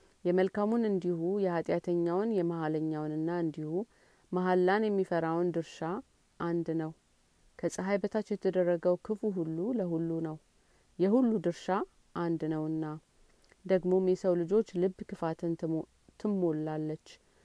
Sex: female